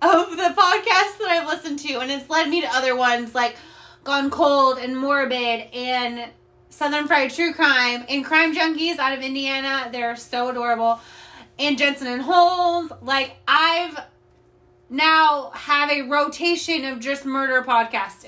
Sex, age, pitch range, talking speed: female, 20-39, 250-320 Hz, 155 wpm